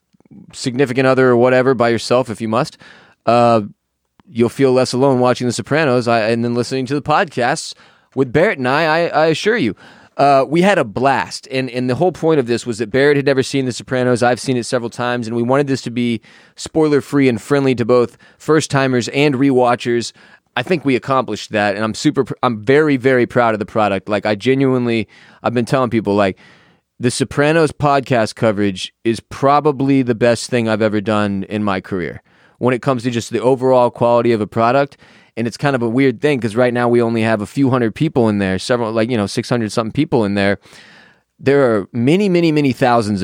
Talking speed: 215 wpm